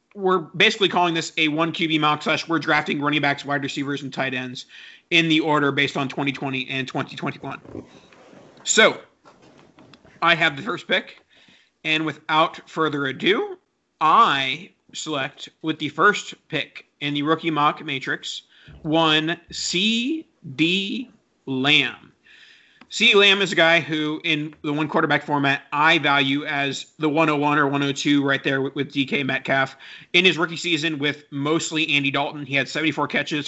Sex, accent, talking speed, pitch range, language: male, American, 155 wpm, 140-165 Hz, English